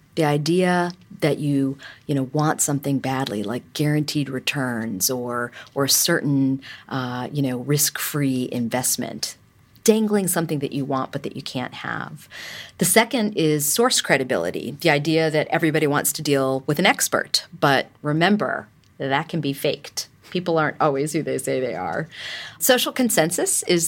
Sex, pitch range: female, 145-190 Hz